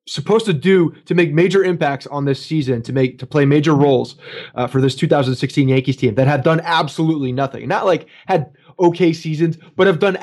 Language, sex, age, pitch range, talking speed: English, male, 20-39, 135-170 Hz, 200 wpm